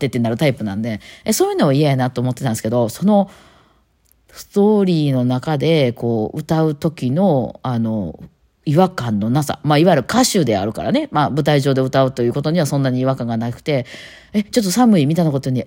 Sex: female